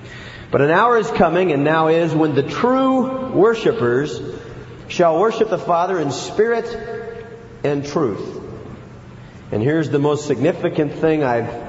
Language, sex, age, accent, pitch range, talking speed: English, male, 40-59, American, 135-225 Hz, 140 wpm